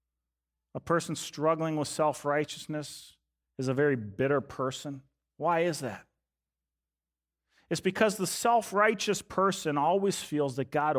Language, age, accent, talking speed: English, 40-59, American, 130 wpm